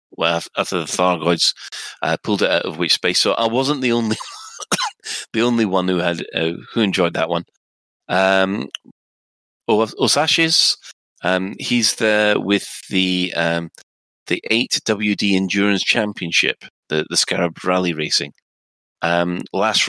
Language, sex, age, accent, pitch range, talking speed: English, male, 30-49, British, 85-105 Hz, 135 wpm